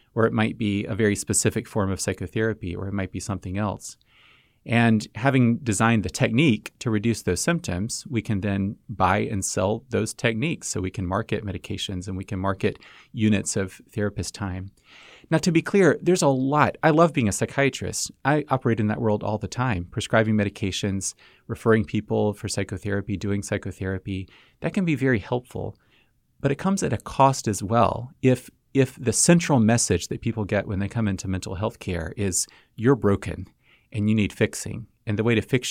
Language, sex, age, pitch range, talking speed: English, male, 30-49, 95-120 Hz, 190 wpm